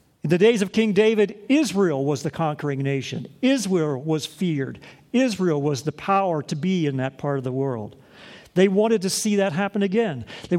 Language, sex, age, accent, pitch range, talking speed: English, male, 50-69, American, 145-195 Hz, 195 wpm